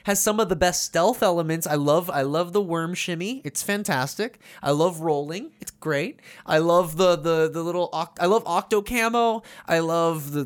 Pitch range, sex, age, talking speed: 145-210 Hz, male, 20-39, 200 wpm